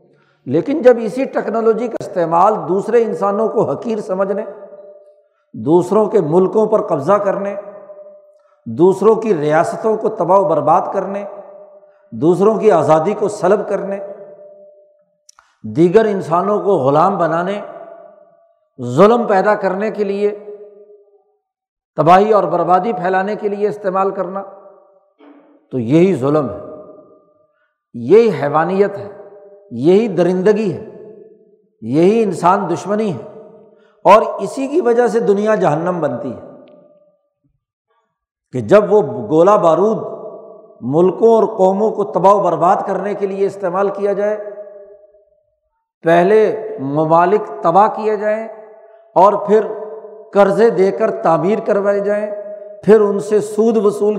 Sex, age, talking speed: male, 60-79, 120 wpm